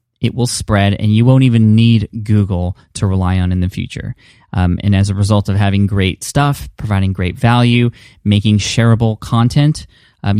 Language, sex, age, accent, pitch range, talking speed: English, male, 20-39, American, 100-120 Hz, 180 wpm